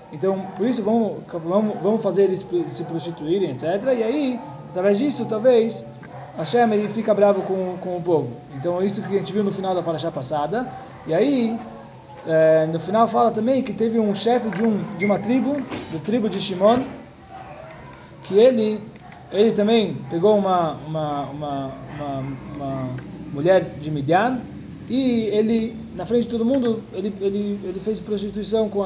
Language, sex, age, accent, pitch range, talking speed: Portuguese, male, 20-39, Brazilian, 160-215 Hz, 170 wpm